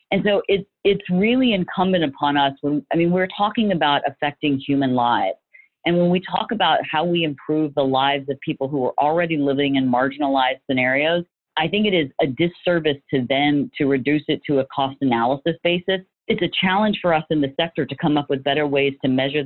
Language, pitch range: English, 140-185 Hz